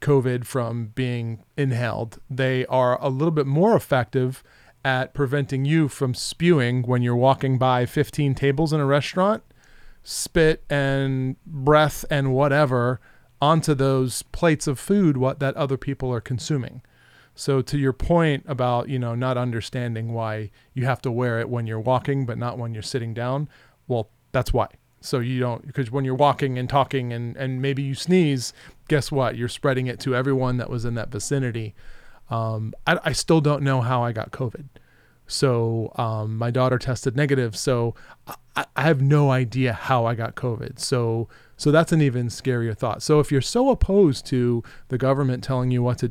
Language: English